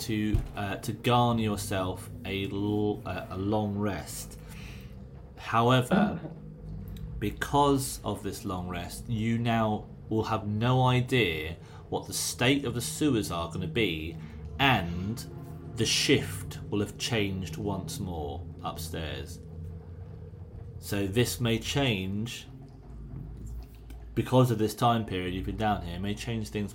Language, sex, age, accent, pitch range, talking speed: English, male, 30-49, British, 95-125 Hz, 130 wpm